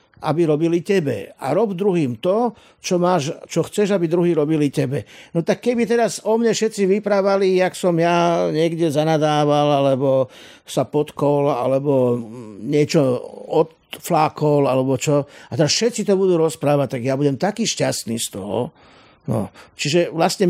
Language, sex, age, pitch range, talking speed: Slovak, male, 50-69, 130-180 Hz, 150 wpm